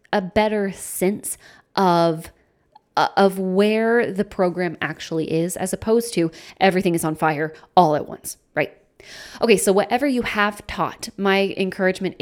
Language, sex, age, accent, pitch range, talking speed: English, female, 20-39, American, 175-225 Hz, 145 wpm